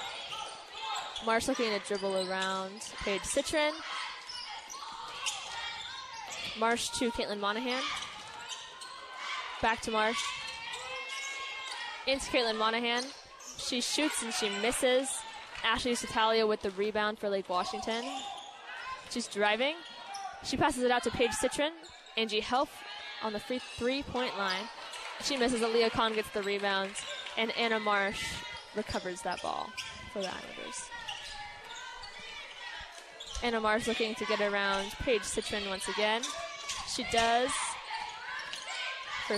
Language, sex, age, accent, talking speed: English, female, 10-29, American, 115 wpm